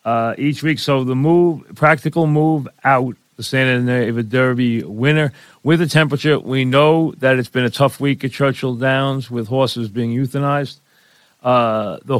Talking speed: 165 wpm